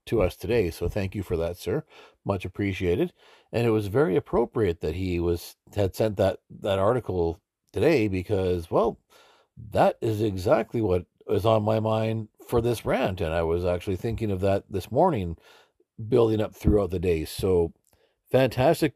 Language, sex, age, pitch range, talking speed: English, male, 50-69, 90-120 Hz, 170 wpm